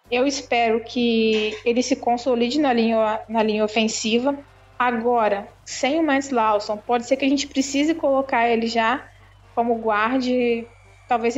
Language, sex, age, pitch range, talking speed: Portuguese, female, 20-39, 225-265 Hz, 140 wpm